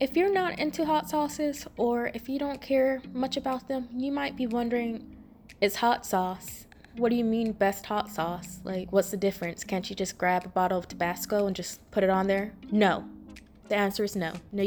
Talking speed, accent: 215 wpm, American